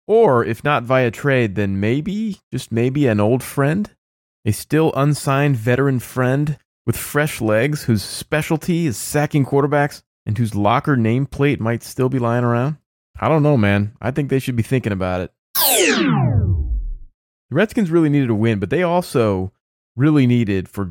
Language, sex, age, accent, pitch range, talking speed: English, male, 30-49, American, 105-145 Hz, 165 wpm